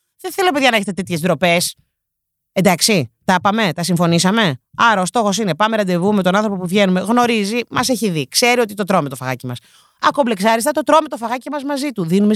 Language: Greek